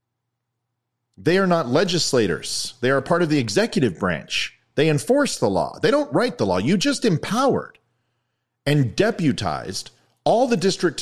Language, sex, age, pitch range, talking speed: English, male, 40-59, 115-165 Hz, 155 wpm